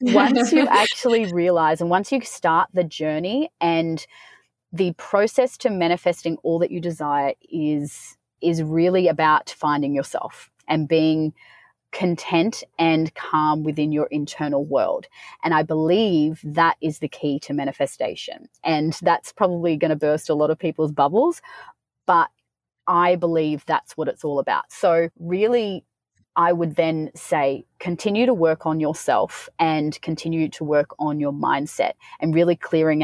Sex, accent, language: female, Australian, English